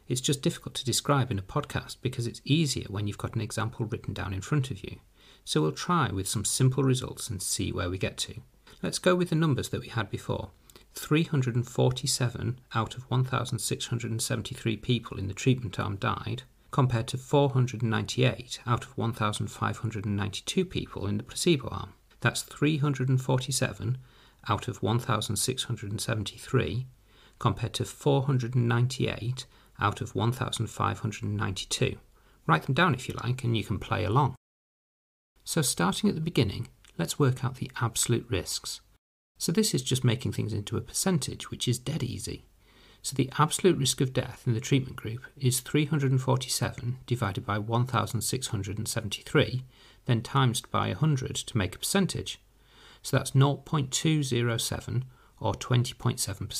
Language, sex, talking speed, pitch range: English, male, 145 wpm, 110-130 Hz